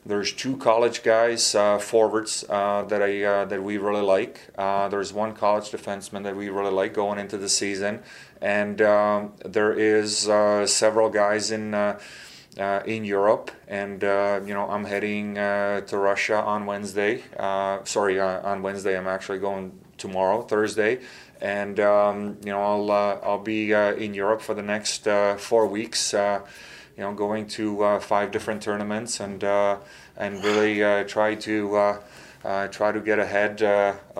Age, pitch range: 30-49, 100-105 Hz